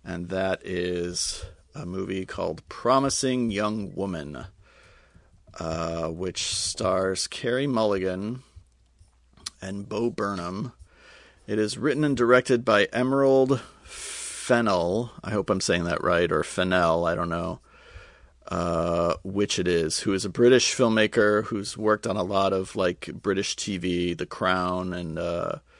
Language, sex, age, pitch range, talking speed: English, male, 40-59, 90-120 Hz, 135 wpm